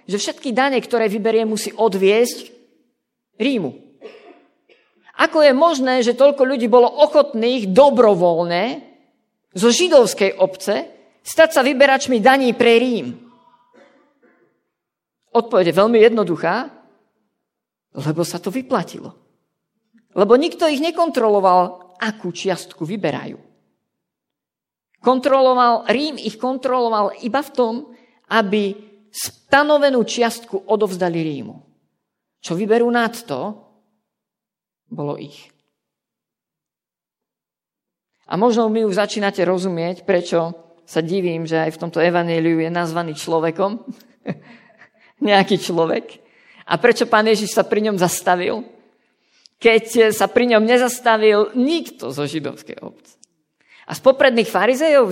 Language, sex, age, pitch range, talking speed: Slovak, female, 50-69, 185-250 Hz, 105 wpm